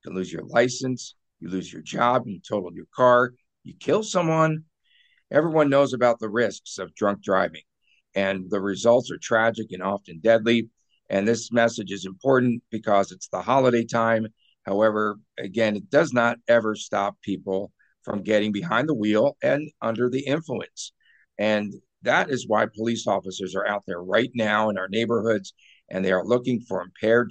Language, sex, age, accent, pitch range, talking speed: English, male, 50-69, American, 100-125 Hz, 175 wpm